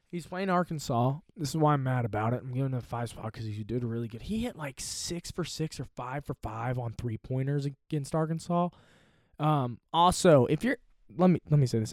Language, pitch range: English, 120-170 Hz